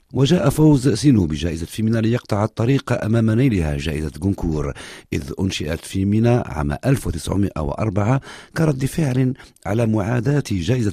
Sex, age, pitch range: male, 50-69, 80-115 Hz